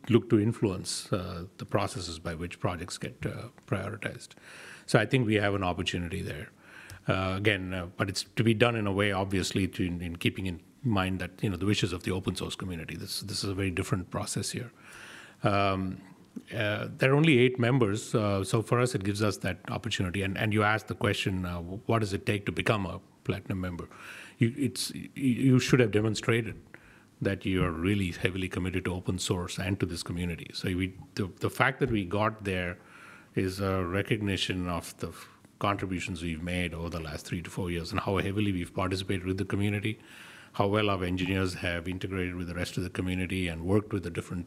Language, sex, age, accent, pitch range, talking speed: English, male, 30-49, Indian, 90-110 Hz, 210 wpm